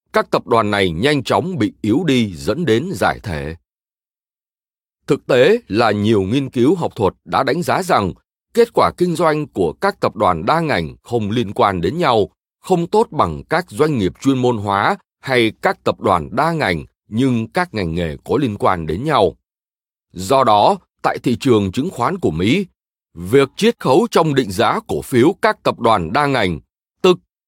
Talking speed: 190 wpm